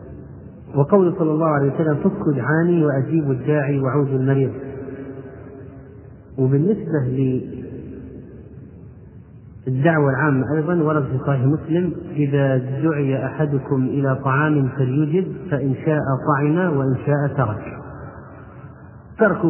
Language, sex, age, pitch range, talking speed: Arabic, male, 40-59, 130-155 Hz, 100 wpm